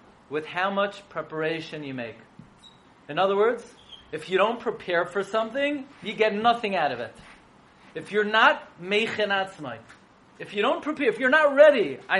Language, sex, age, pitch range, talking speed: English, male, 40-59, 150-220 Hz, 165 wpm